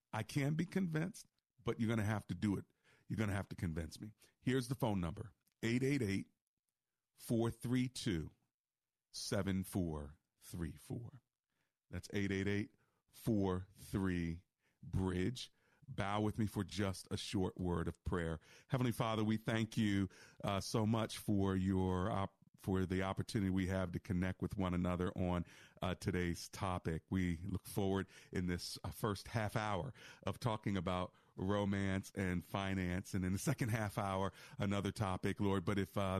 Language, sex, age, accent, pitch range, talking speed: English, male, 40-59, American, 90-110 Hz, 145 wpm